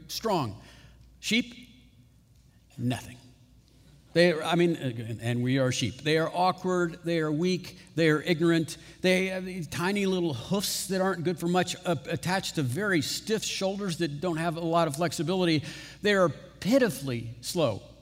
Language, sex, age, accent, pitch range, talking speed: English, male, 50-69, American, 140-190 Hz, 155 wpm